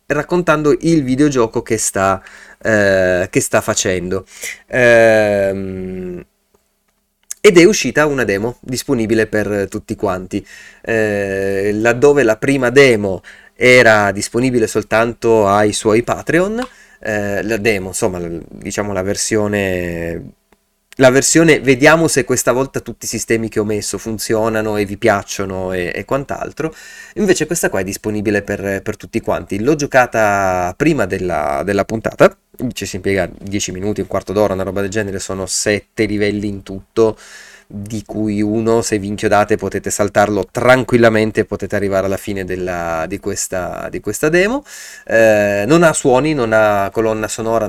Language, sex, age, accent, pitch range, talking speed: Italian, male, 30-49, native, 100-125 Hz, 145 wpm